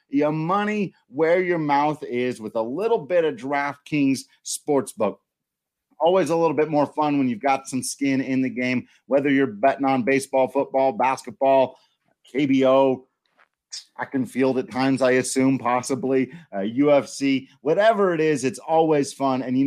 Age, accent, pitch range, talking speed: 30-49, American, 130-160 Hz, 160 wpm